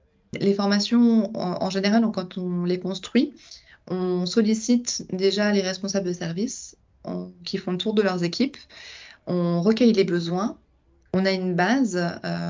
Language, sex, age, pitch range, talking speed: French, female, 20-39, 180-210 Hz, 160 wpm